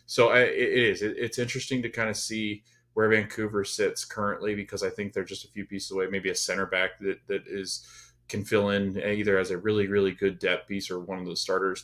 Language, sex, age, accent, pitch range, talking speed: English, male, 20-39, American, 100-130 Hz, 235 wpm